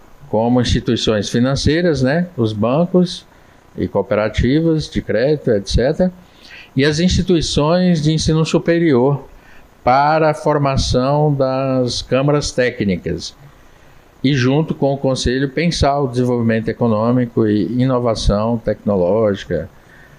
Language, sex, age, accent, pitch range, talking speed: Portuguese, male, 50-69, Brazilian, 105-140 Hz, 105 wpm